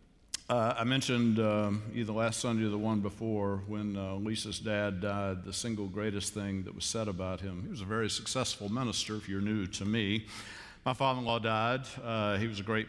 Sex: male